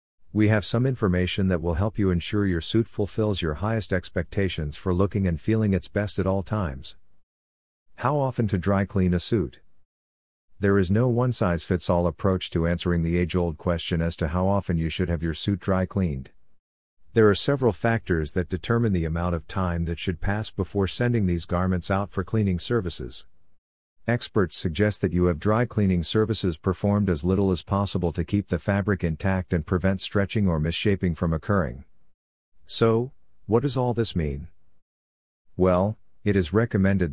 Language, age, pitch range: English, 50-69, 85-100 Hz